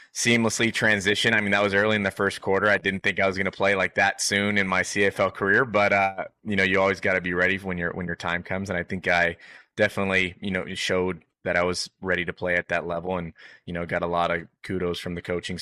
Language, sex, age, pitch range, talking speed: English, male, 20-39, 90-100 Hz, 260 wpm